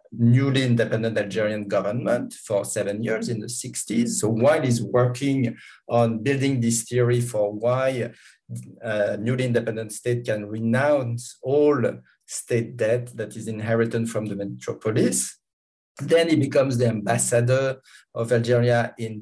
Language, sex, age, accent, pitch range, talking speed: English, male, 50-69, French, 115-135 Hz, 135 wpm